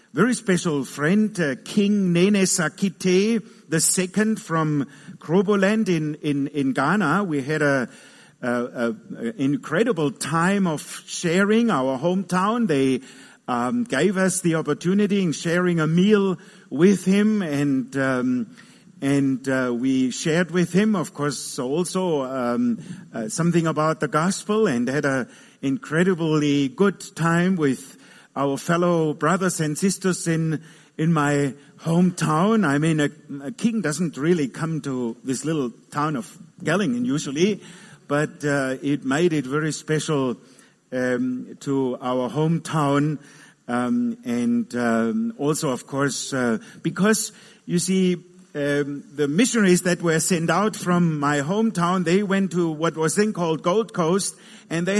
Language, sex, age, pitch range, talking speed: English, male, 50-69, 145-210 Hz, 140 wpm